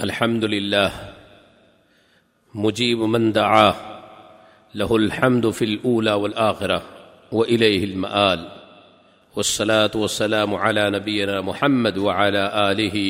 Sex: male